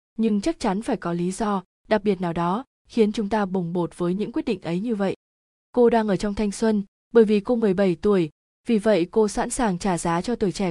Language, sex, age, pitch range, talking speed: Vietnamese, female, 20-39, 185-225 Hz, 245 wpm